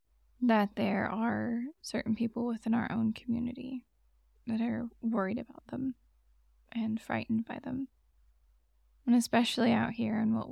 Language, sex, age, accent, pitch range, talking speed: English, female, 10-29, American, 210-245 Hz, 135 wpm